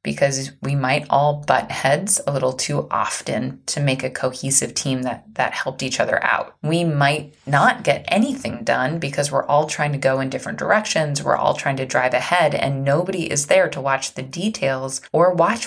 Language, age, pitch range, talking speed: English, 20-39, 140-180 Hz, 200 wpm